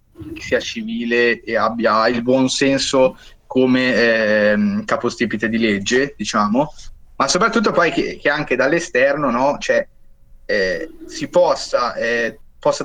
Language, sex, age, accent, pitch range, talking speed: Italian, male, 20-39, native, 115-145 Hz, 130 wpm